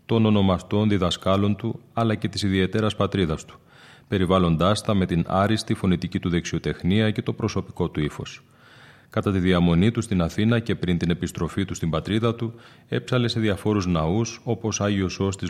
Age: 30-49